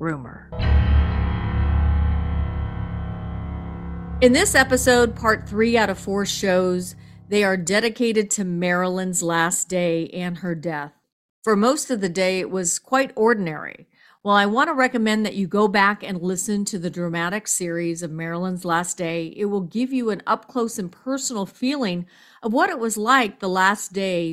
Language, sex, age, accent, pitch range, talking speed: English, female, 40-59, American, 170-205 Hz, 160 wpm